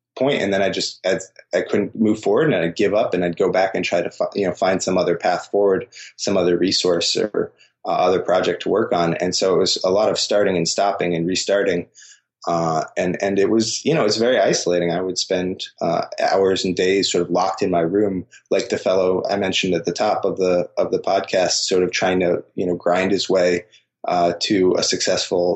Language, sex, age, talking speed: English, male, 20-39, 235 wpm